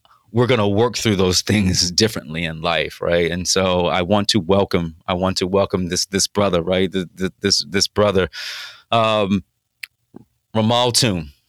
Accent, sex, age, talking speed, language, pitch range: American, male, 30-49, 165 wpm, English, 95-110 Hz